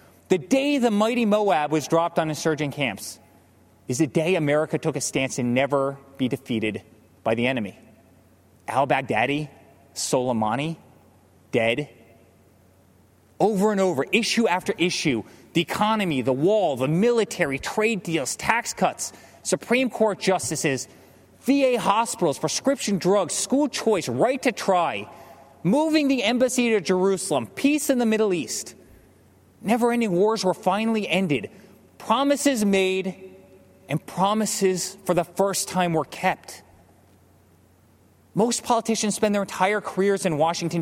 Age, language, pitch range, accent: 30-49, English, 140-220 Hz, American